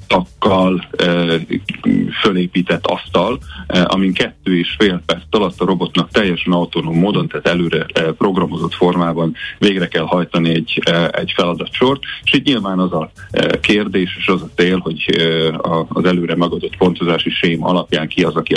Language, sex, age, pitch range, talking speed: Hungarian, male, 40-59, 85-95 Hz, 160 wpm